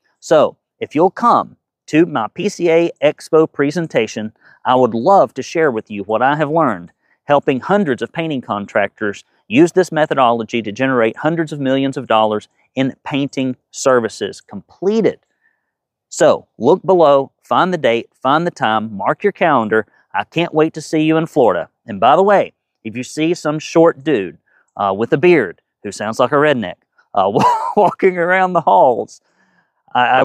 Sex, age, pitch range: male, 40-59, 125-155 Hz